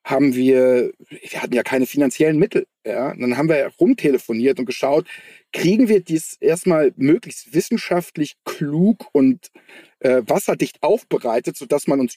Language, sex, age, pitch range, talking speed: German, male, 40-59, 125-180 Hz, 145 wpm